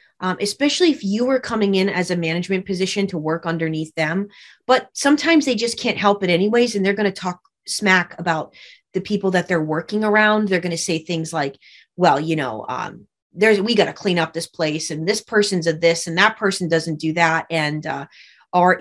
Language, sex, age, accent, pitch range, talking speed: English, female, 30-49, American, 170-210 Hz, 215 wpm